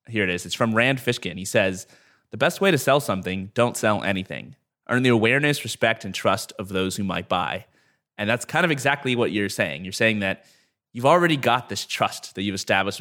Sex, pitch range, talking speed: male, 100-135 Hz, 220 wpm